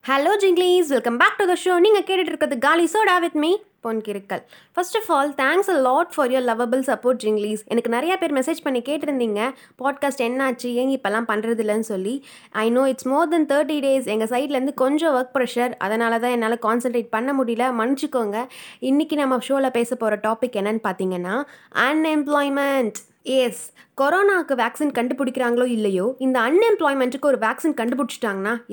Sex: female